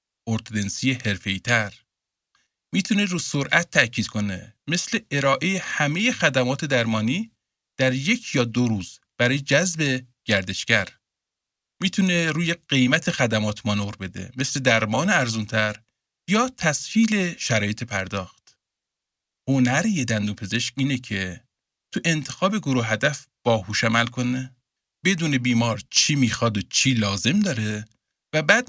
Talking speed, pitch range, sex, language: 115 wpm, 110-165 Hz, male, Persian